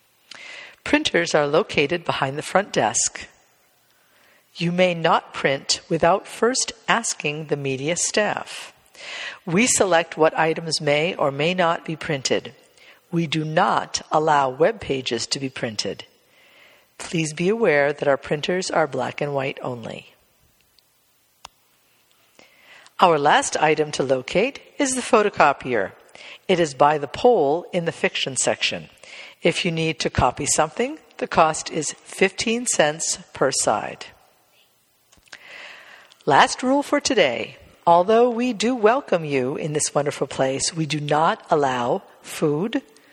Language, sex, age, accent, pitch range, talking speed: English, female, 50-69, American, 150-205 Hz, 130 wpm